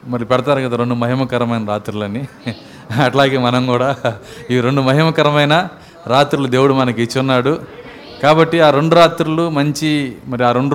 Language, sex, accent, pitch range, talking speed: Telugu, male, native, 125-150 Hz, 140 wpm